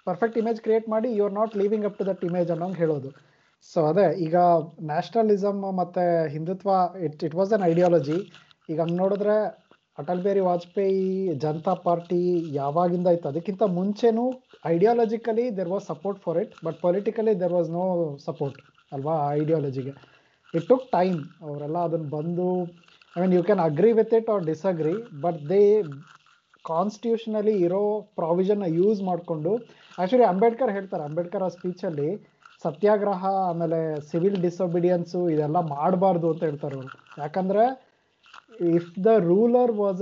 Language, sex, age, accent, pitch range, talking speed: Kannada, male, 20-39, native, 170-210 Hz, 140 wpm